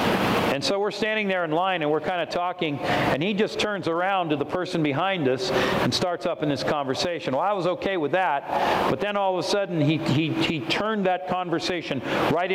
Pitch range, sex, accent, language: 150-195 Hz, male, American, English